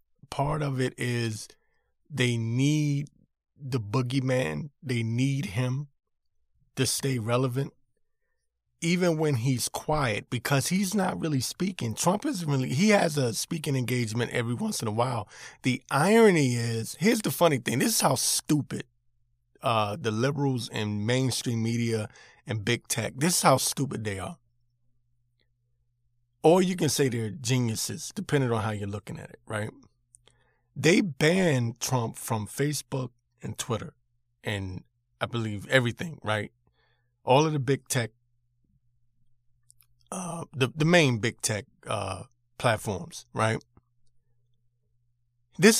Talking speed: 135 wpm